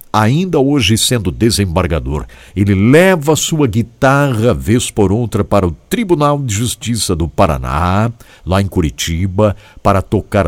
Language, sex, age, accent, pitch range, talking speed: English, male, 60-79, Brazilian, 75-120 Hz, 135 wpm